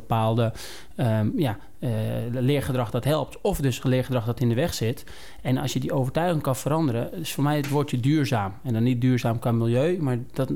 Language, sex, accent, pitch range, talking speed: Dutch, male, Dutch, 120-150 Hz, 205 wpm